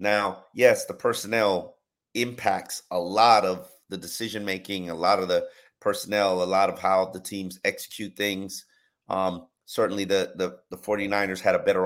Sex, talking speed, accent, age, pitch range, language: male, 160 wpm, American, 30-49, 100-125 Hz, English